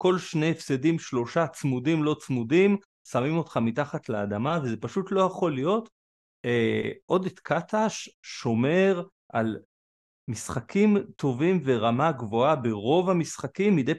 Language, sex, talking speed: Hebrew, male, 120 wpm